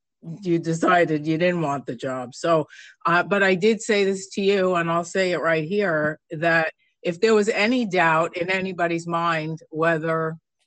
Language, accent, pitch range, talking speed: English, American, 160-190 Hz, 180 wpm